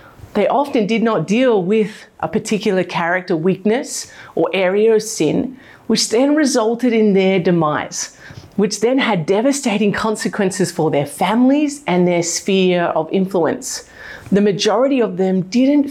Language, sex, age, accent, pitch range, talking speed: English, female, 40-59, Australian, 185-235 Hz, 145 wpm